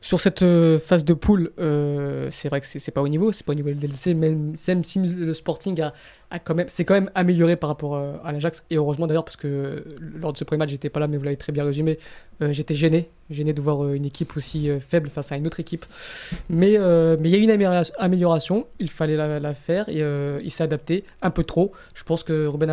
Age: 20-39